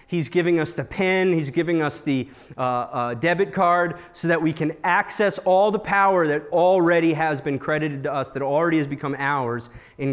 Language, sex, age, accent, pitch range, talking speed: English, male, 30-49, American, 140-195 Hz, 200 wpm